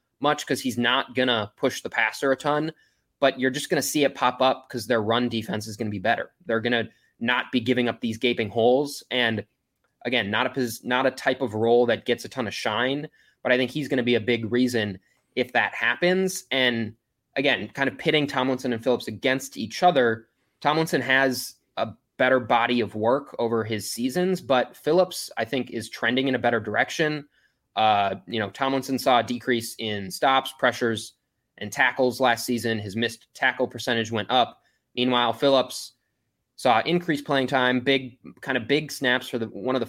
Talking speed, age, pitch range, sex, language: 200 wpm, 20-39, 115-130 Hz, male, English